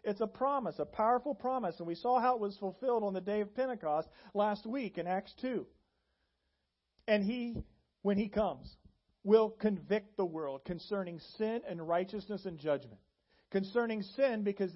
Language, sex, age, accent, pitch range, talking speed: English, male, 40-59, American, 150-215 Hz, 165 wpm